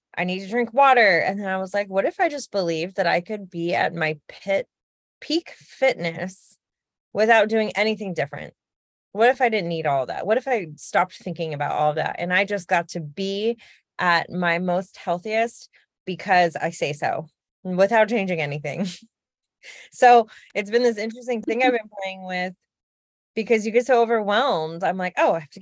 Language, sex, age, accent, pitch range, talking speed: English, female, 20-39, American, 165-235 Hz, 190 wpm